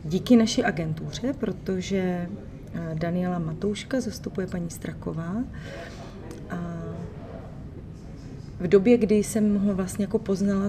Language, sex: Czech, female